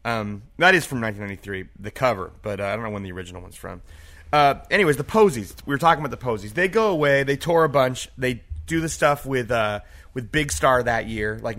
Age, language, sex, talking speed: 30-49, English, male, 240 wpm